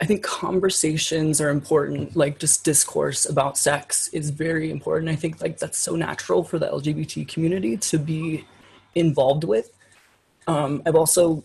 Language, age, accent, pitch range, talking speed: English, 20-39, American, 145-165 Hz, 155 wpm